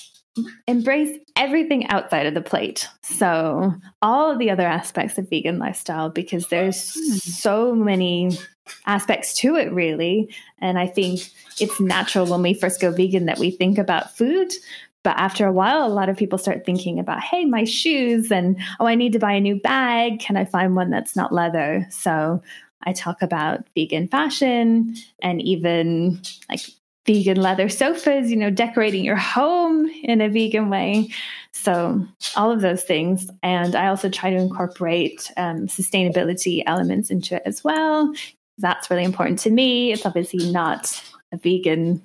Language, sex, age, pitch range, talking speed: English, female, 20-39, 180-230 Hz, 165 wpm